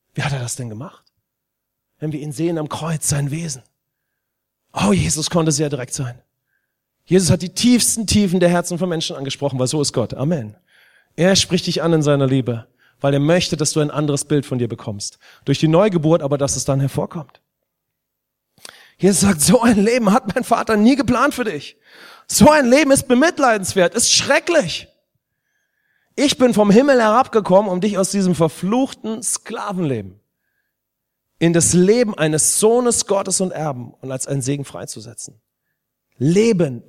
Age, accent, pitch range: 30-49, German, 140-205 Hz